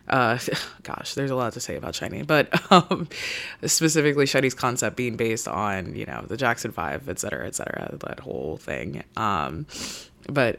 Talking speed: 175 wpm